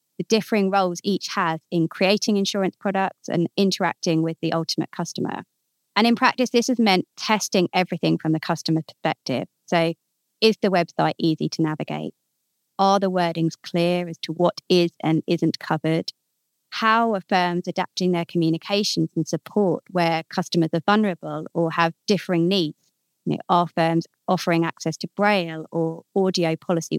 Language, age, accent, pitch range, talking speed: English, 30-49, British, 165-195 Hz, 155 wpm